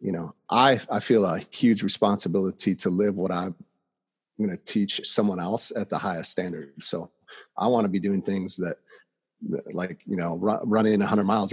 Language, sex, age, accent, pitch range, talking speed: English, male, 40-59, American, 95-115 Hz, 195 wpm